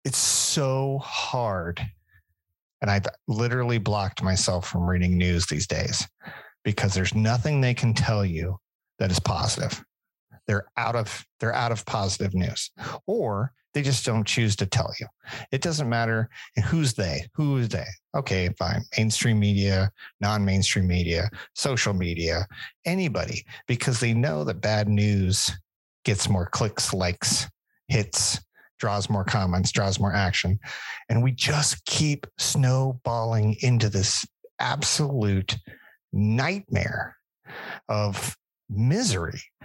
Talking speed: 125 wpm